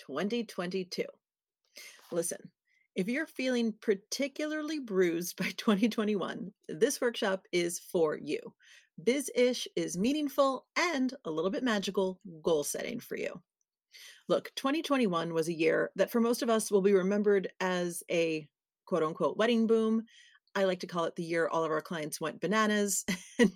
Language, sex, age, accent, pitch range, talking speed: English, female, 40-59, American, 190-255 Hz, 150 wpm